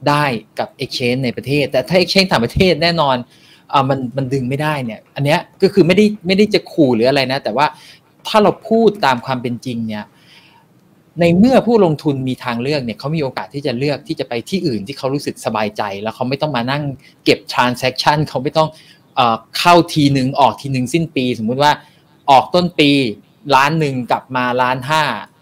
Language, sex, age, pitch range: Thai, male, 20-39, 130-165 Hz